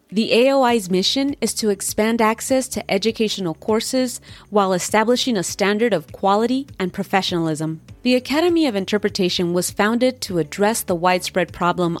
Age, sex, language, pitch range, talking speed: 30-49, female, English, 180-230 Hz, 145 wpm